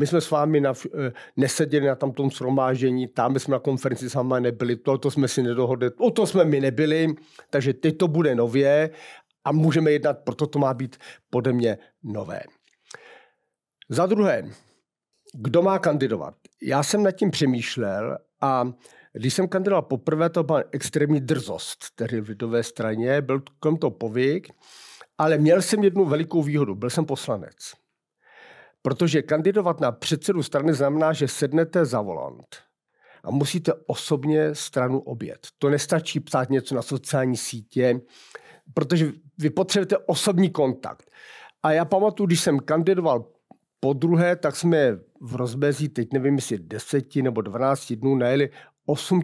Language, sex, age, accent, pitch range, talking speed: Czech, male, 50-69, native, 130-160 Hz, 150 wpm